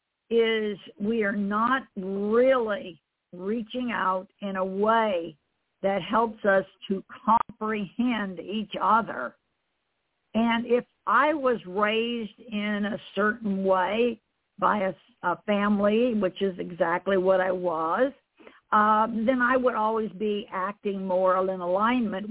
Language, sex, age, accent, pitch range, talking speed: English, female, 50-69, American, 195-235 Hz, 125 wpm